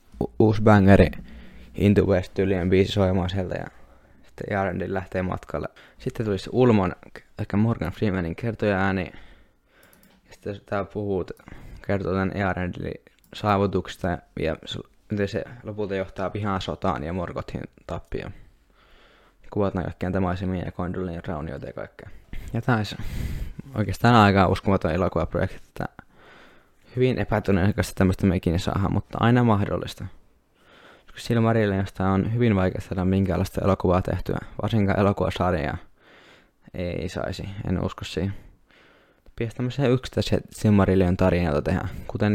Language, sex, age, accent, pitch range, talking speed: Finnish, male, 20-39, native, 90-105 Hz, 115 wpm